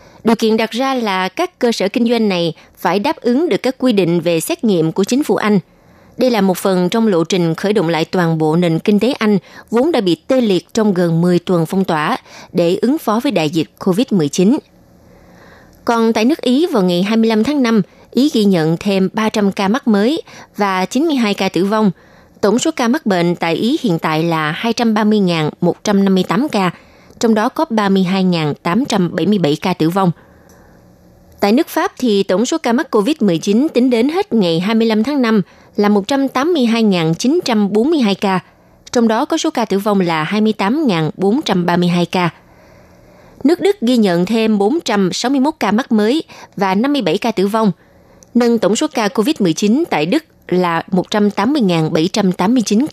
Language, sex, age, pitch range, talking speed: Vietnamese, female, 20-39, 180-240 Hz, 170 wpm